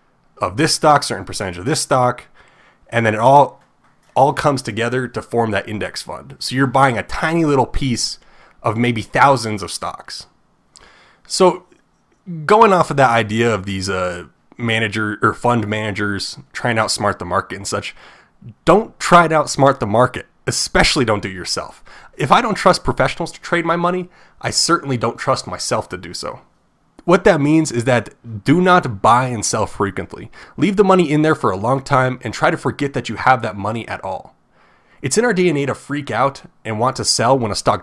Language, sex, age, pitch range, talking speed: English, male, 30-49, 110-155 Hz, 200 wpm